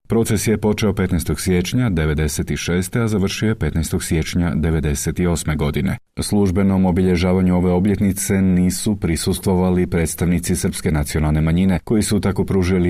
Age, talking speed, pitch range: 40-59, 125 wpm, 80-95 Hz